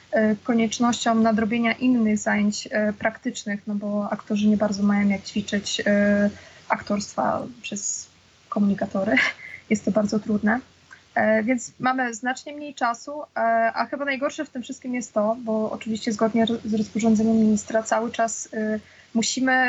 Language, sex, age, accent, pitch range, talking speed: Polish, female, 20-39, native, 215-245 Hz, 130 wpm